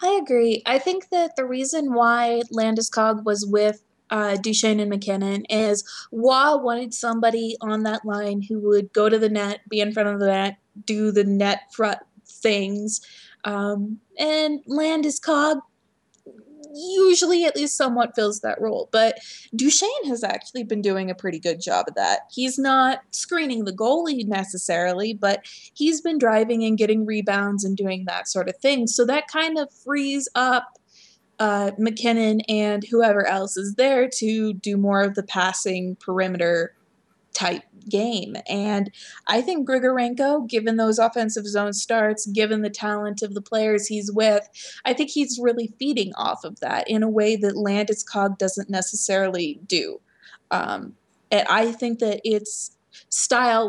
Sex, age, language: female, 20-39, English